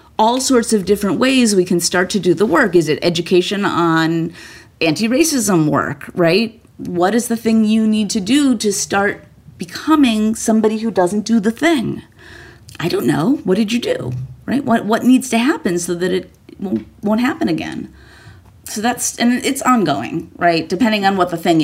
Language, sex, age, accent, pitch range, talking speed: English, female, 30-49, American, 165-225 Hz, 185 wpm